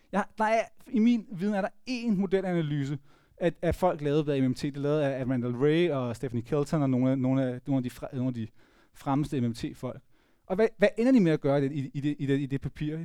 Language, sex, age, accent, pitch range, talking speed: Danish, male, 30-49, native, 135-190 Hz, 235 wpm